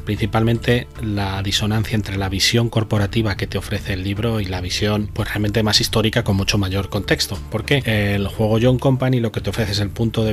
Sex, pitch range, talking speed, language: male, 100-120 Hz, 215 wpm, Spanish